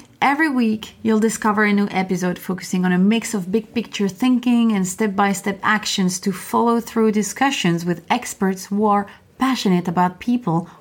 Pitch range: 190-235 Hz